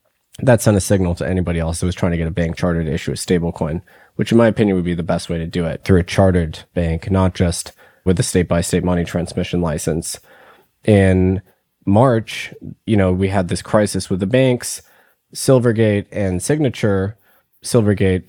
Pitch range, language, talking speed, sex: 90-105 Hz, English, 190 wpm, male